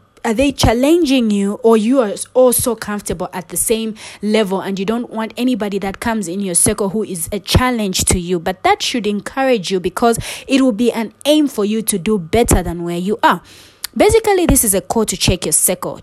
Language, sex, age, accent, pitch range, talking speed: English, female, 20-39, South African, 185-240 Hz, 220 wpm